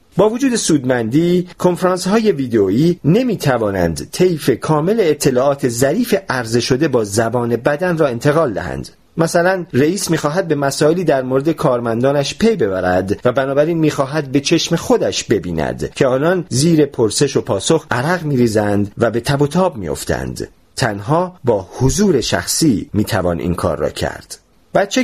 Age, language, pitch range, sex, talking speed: 40-59, Persian, 120-175 Hz, male, 140 wpm